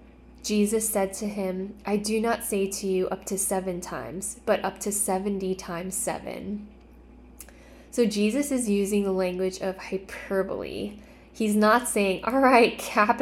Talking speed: 155 wpm